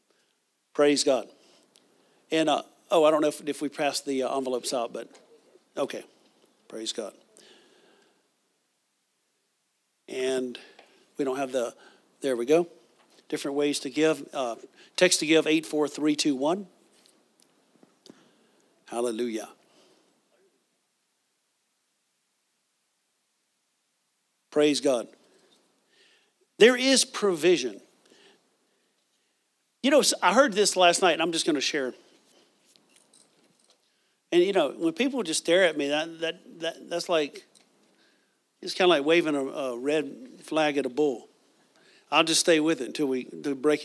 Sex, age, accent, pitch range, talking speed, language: male, 50-69, American, 145-195 Hz, 125 wpm, English